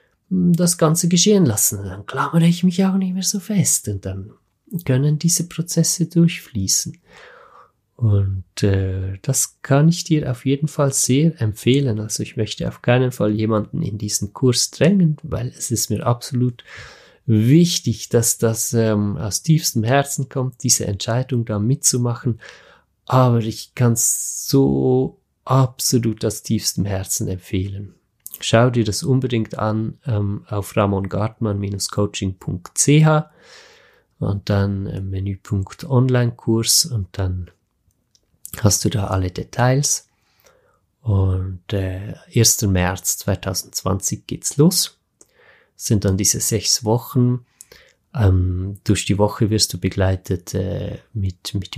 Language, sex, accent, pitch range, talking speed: German, male, German, 100-140 Hz, 130 wpm